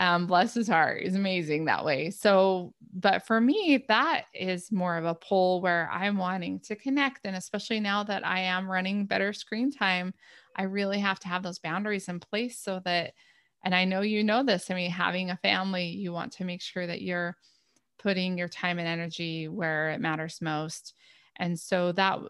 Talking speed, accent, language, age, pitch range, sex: 200 wpm, American, English, 20-39, 175-205 Hz, female